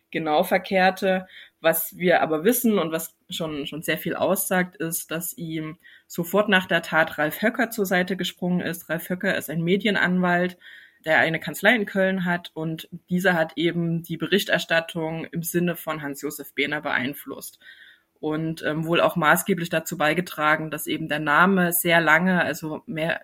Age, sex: 20-39, female